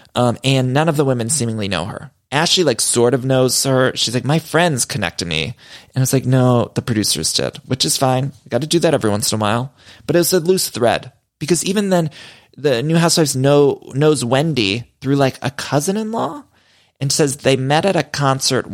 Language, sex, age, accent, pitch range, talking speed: English, male, 20-39, American, 120-150 Hz, 215 wpm